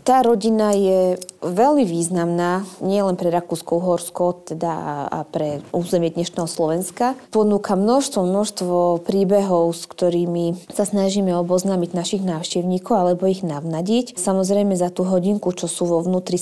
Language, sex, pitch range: Slovak, female, 175-195 Hz